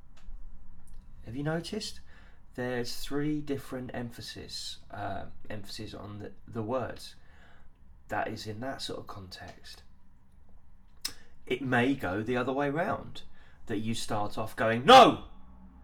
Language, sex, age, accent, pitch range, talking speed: English, male, 20-39, British, 85-115 Hz, 120 wpm